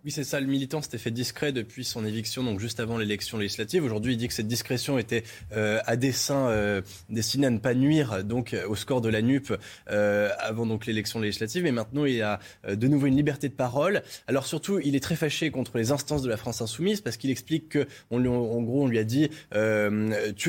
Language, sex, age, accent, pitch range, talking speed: French, male, 20-39, French, 110-145 Hz, 245 wpm